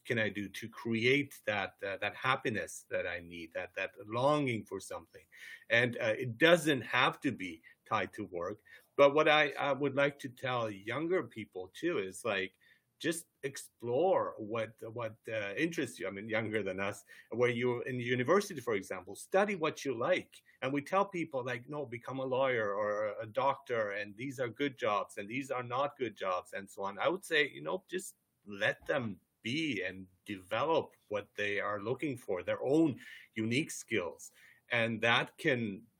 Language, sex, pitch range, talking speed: English, male, 105-140 Hz, 185 wpm